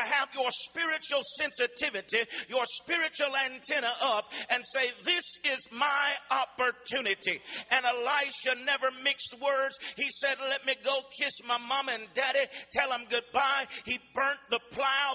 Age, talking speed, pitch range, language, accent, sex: 50-69, 145 wpm, 240-280 Hz, English, American, male